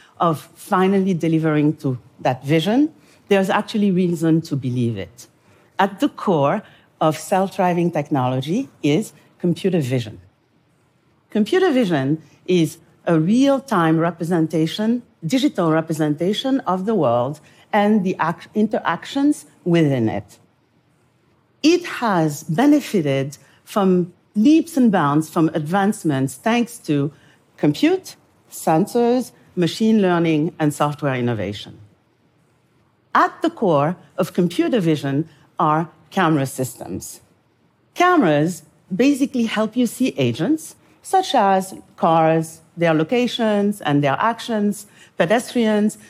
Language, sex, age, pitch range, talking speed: Arabic, female, 50-69, 150-215 Hz, 105 wpm